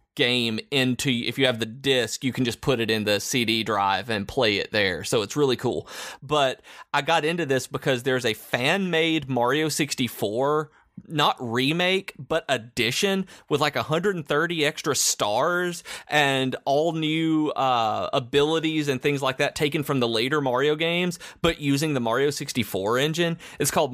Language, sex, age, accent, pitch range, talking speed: English, male, 30-49, American, 120-150 Hz, 170 wpm